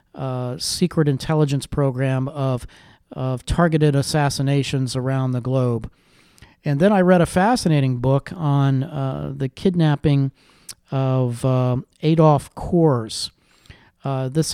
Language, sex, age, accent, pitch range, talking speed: English, male, 40-59, American, 130-155 Hz, 115 wpm